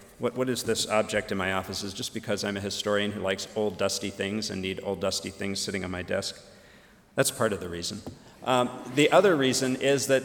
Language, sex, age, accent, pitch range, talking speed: English, male, 50-69, American, 105-125 Hz, 230 wpm